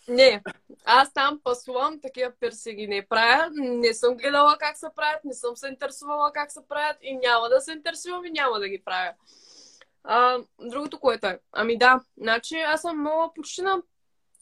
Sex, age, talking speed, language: female, 20-39, 185 wpm, Bulgarian